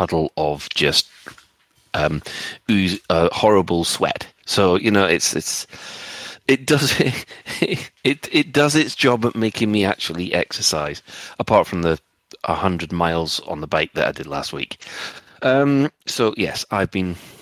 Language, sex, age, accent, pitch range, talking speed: English, male, 30-49, British, 85-115 Hz, 150 wpm